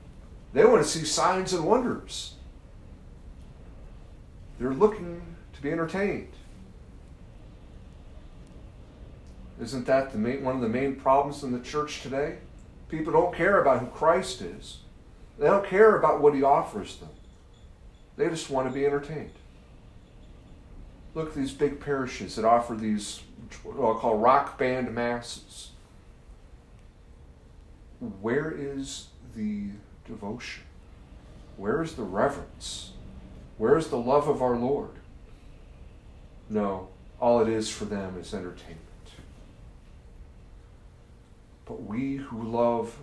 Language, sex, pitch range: English, male, 95-145 Hz